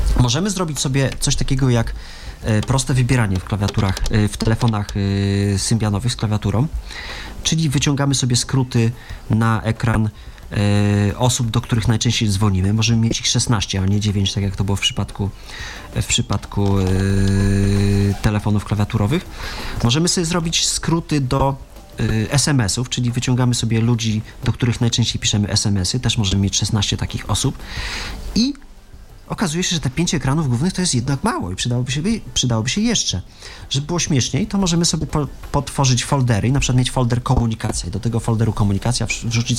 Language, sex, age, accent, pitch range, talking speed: Polish, male, 30-49, native, 105-130 Hz, 155 wpm